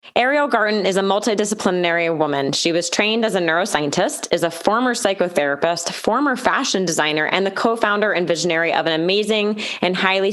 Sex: female